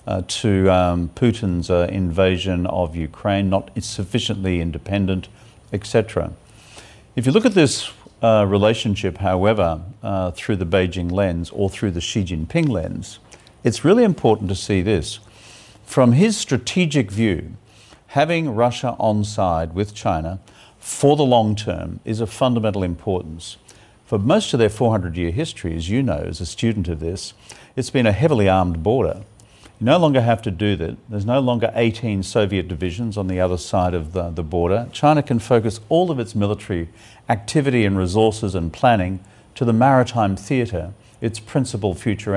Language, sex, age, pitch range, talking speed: English, male, 50-69, 95-115 Hz, 165 wpm